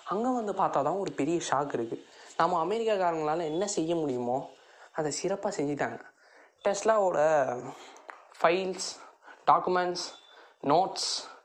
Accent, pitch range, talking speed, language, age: native, 140-175 Hz, 100 wpm, Tamil, 20-39